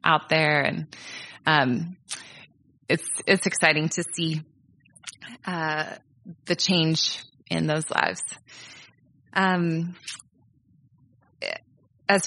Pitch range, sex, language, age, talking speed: 155-190 Hz, female, English, 20-39, 85 wpm